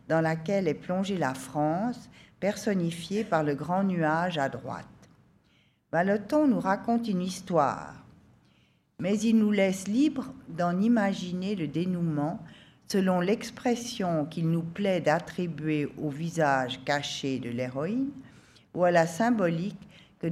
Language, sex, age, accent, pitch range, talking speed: French, female, 50-69, French, 160-215 Hz, 125 wpm